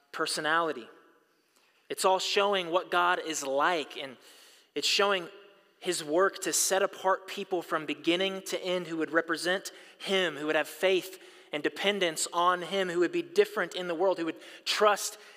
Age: 20-39